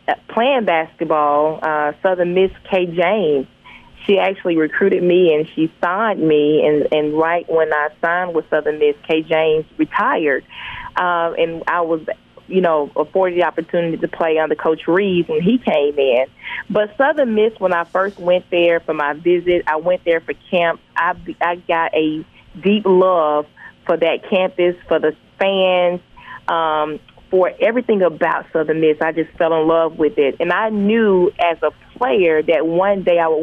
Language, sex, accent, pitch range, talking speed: English, female, American, 160-185 Hz, 175 wpm